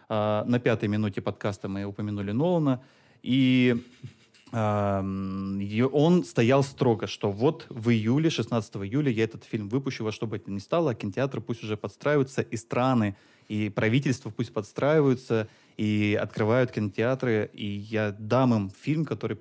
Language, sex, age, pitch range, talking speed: Russian, male, 20-39, 105-130 Hz, 150 wpm